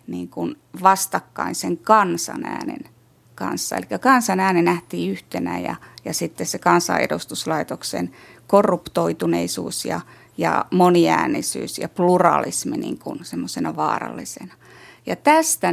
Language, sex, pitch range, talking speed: Finnish, female, 155-195 Hz, 105 wpm